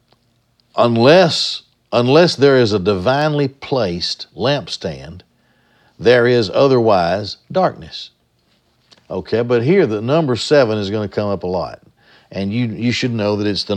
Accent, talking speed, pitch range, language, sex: American, 145 wpm, 105-125 Hz, English, male